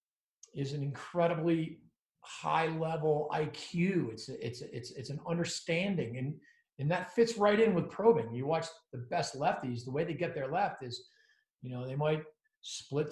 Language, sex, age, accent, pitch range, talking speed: English, male, 40-59, American, 130-175 Hz, 170 wpm